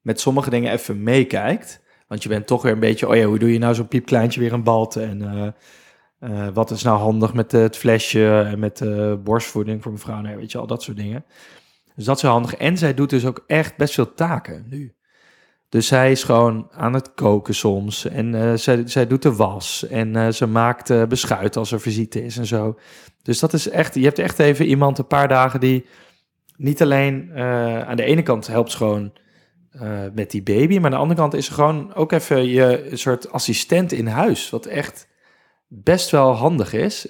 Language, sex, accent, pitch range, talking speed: Dutch, male, Dutch, 110-135 Hz, 215 wpm